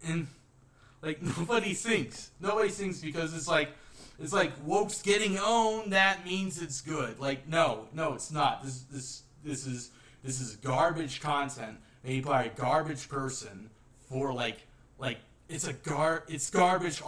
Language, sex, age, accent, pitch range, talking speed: English, male, 20-39, American, 125-160 Hz, 155 wpm